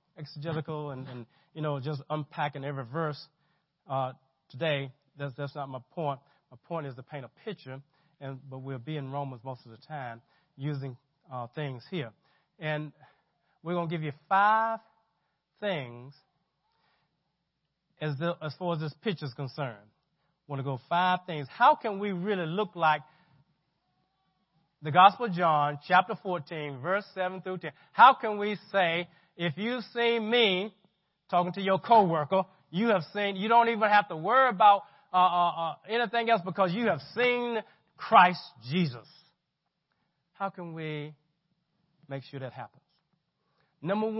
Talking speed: 155 wpm